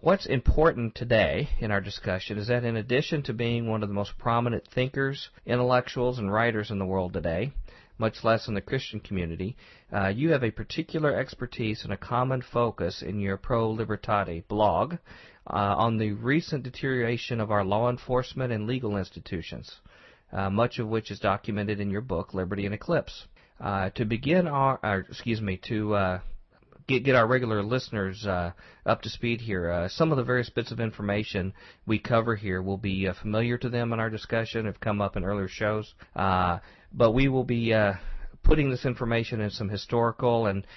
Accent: American